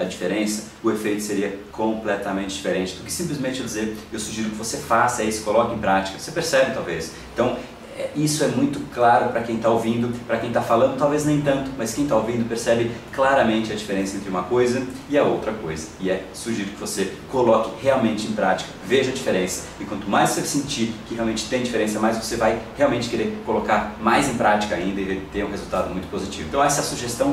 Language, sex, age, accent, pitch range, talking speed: Portuguese, male, 30-49, Brazilian, 110-130 Hz, 210 wpm